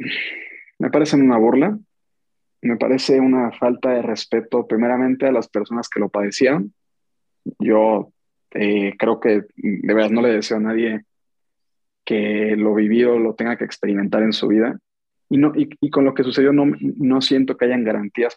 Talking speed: 170 wpm